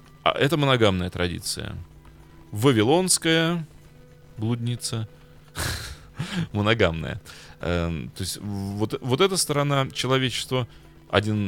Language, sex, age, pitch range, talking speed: Russian, male, 30-49, 85-130 Hz, 65 wpm